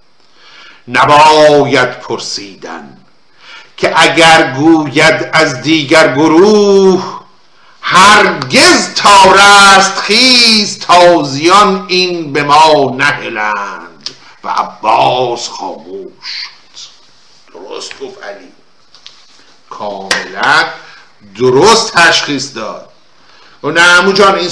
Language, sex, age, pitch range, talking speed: Persian, male, 60-79, 145-200 Hz, 75 wpm